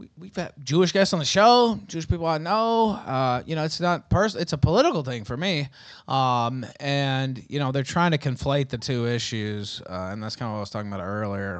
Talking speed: 235 wpm